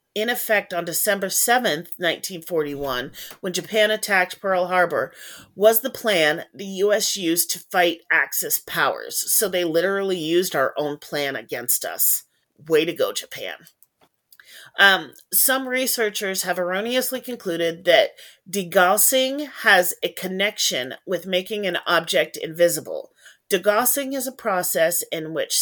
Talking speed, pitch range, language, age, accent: 135 wpm, 170-215 Hz, English, 40-59, American